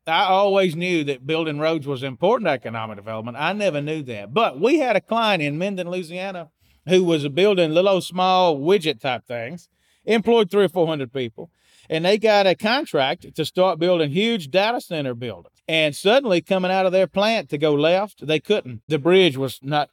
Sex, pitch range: male, 145-190 Hz